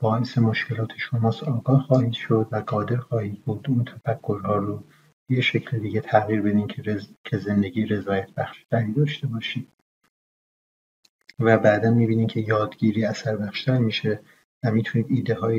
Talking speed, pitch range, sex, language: 140 wpm, 105-120 Hz, male, Persian